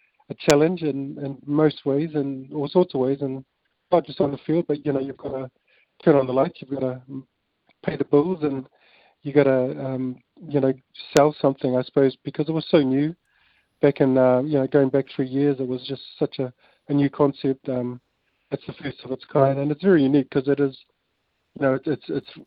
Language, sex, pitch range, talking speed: English, male, 135-145 Hz, 225 wpm